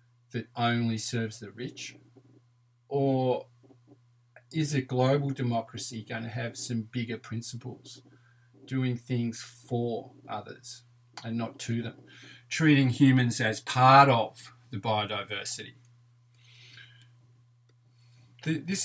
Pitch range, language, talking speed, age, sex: 120-135 Hz, English, 100 wpm, 40-59, male